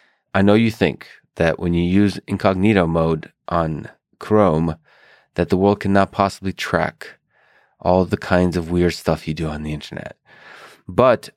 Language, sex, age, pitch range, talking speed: English, male, 30-49, 85-100 Hz, 160 wpm